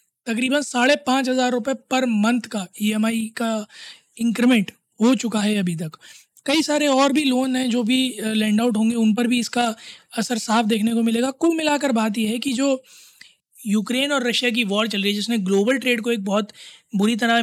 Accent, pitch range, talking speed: native, 215-250 Hz, 205 wpm